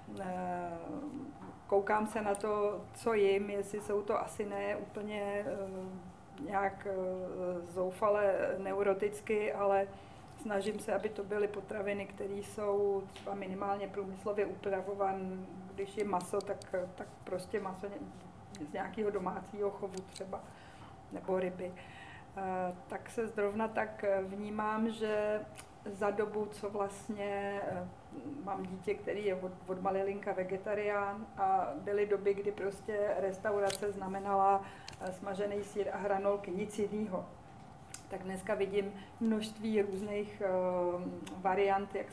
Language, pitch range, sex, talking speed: Czech, 190-210 Hz, female, 115 wpm